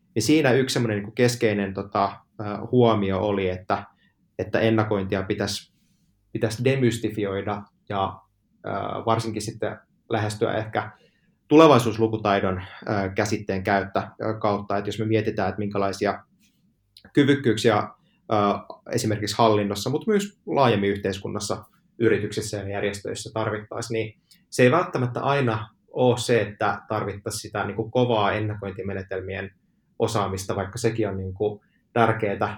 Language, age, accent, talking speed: Finnish, 20-39, native, 100 wpm